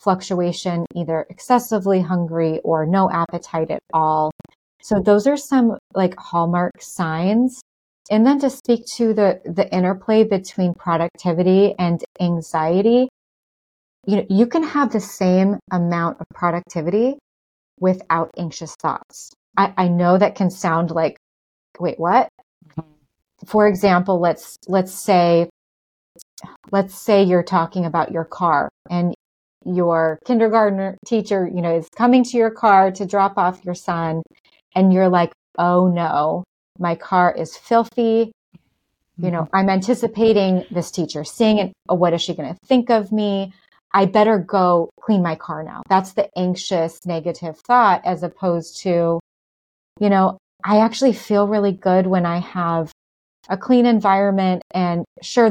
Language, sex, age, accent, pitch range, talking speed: English, female, 30-49, American, 170-205 Hz, 145 wpm